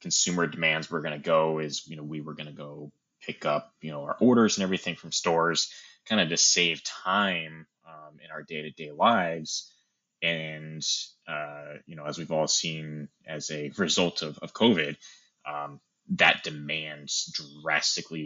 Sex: male